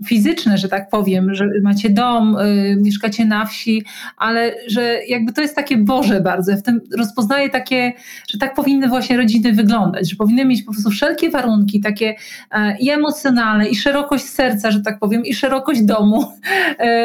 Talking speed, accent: 175 wpm, native